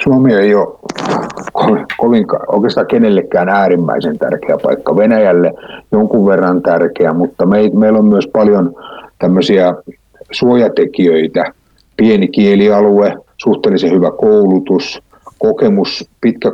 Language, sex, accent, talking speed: Finnish, male, native, 90 wpm